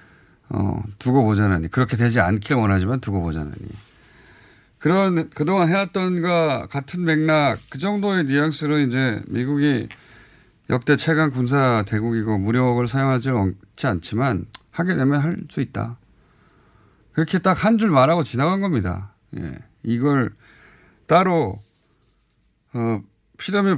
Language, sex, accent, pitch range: Korean, male, native, 105-145 Hz